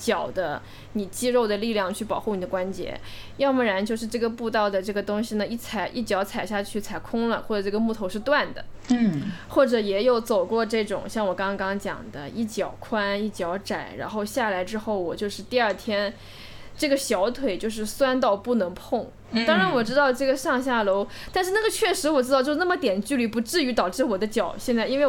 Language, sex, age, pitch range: Chinese, female, 20-39, 195-255 Hz